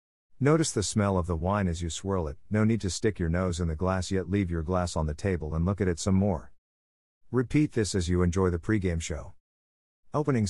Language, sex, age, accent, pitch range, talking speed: English, male, 50-69, American, 85-110 Hz, 235 wpm